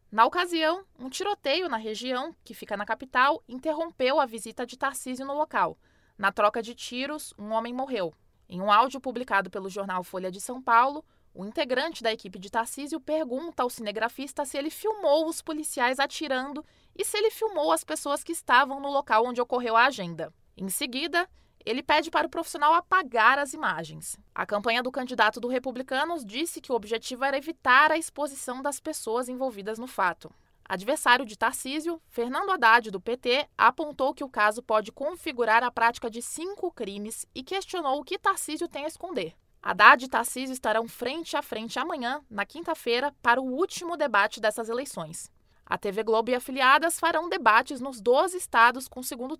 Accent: Brazilian